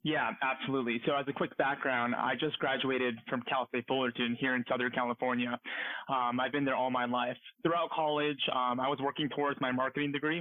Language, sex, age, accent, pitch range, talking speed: English, male, 20-39, American, 125-150 Hz, 200 wpm